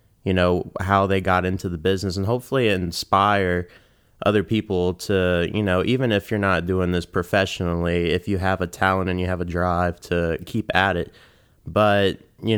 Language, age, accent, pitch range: English, 20-39, American, 90-100 Hz